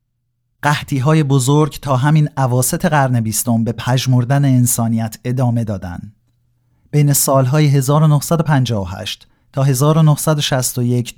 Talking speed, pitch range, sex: 90 wpm, 115-145 Hz, male